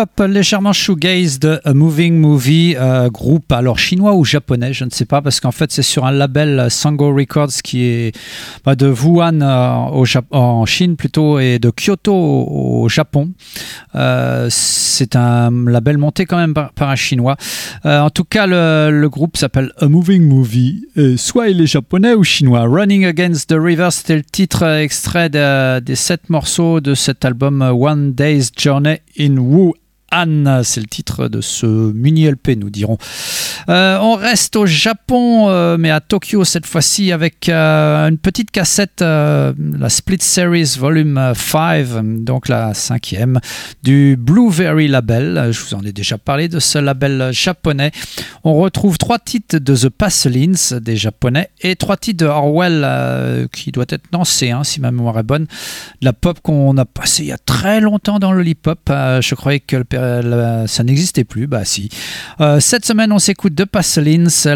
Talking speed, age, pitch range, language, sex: 185 wpm, 40-59, 130-170 Hz, French, male